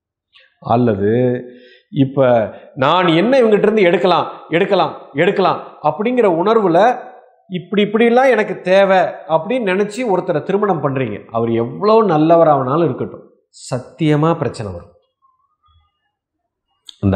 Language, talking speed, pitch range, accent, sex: Tamil, 95 wpm, 125-190 Hz, native, male